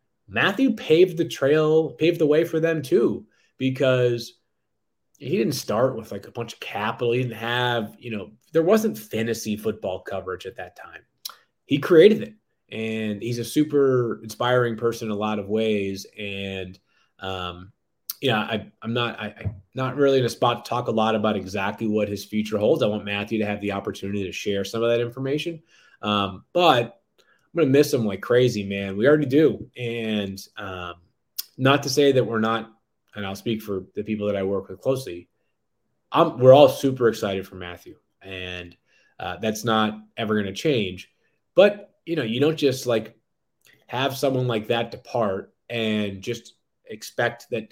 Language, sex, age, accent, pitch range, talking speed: English, male, 20-39, American, 105-130 Hz, 180 wpm